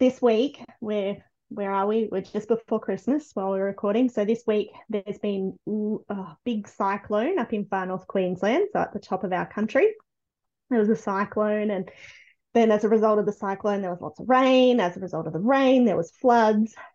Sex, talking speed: female, 210 wpm